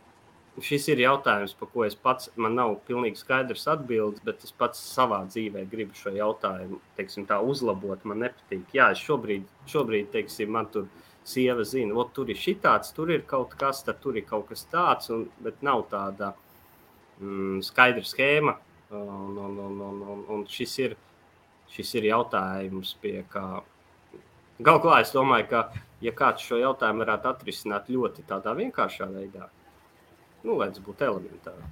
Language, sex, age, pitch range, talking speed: English, male, 30-49, 100-125 Hz, 155 wpm